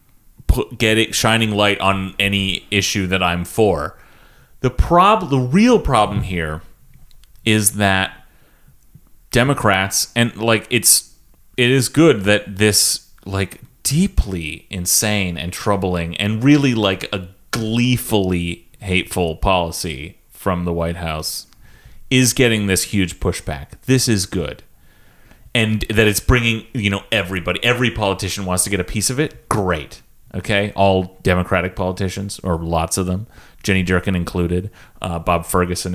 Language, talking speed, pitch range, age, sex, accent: English, 135 wpm, 90-120 Hz, 30-49, male, American